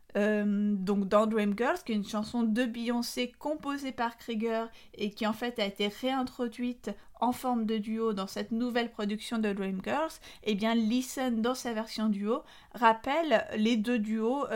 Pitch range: 205-245 Hz